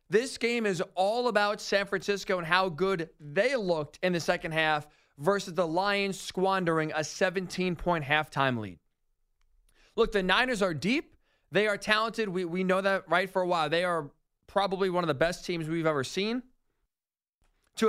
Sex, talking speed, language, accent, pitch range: male, 175 wpm, English, American, 165-210 Hz